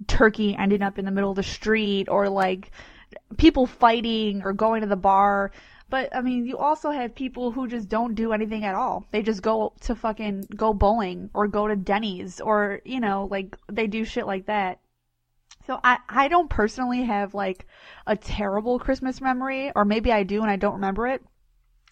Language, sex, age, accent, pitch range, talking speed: English, female, 20-39, American, 200-245 Hz, 195 wpm